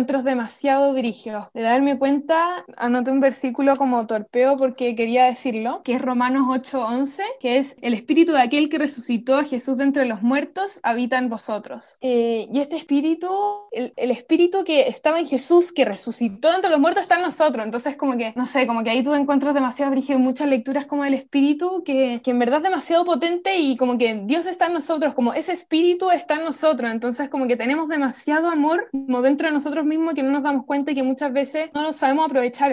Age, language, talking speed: 10-29, Spanish, 210 wpm